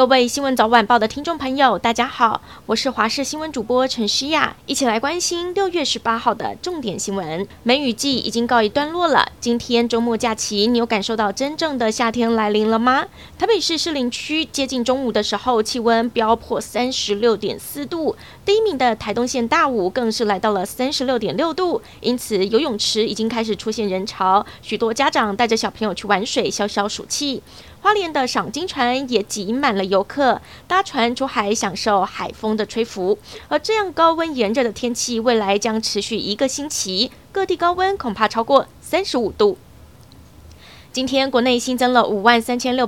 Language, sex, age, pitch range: Chinese, female, 20-39, 215-280 Hz